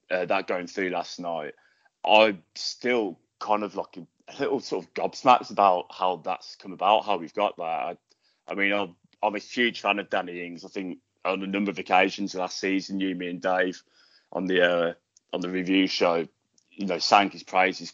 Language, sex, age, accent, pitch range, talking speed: English, male, 20-39, British, 90-105 Hz, 205 wpm